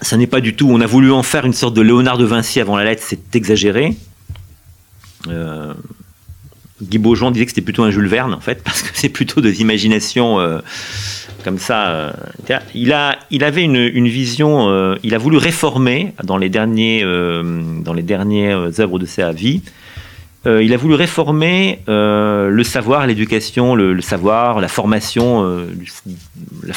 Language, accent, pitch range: French, French, 95-130 Hz